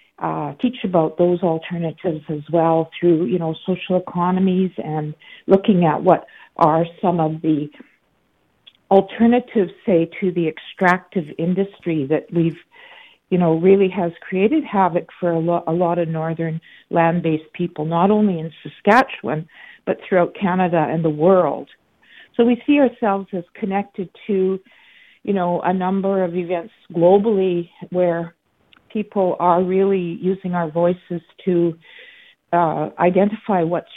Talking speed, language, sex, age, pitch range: 140 wpm, English, female, 50-69, 165-195 Hz